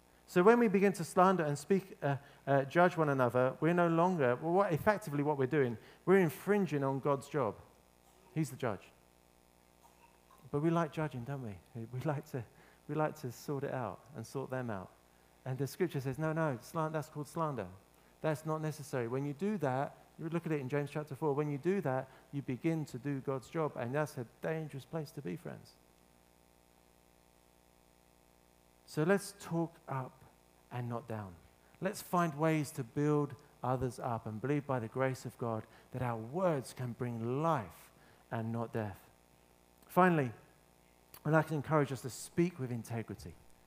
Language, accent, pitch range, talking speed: English, British, 110-160 Hz, 185 wpm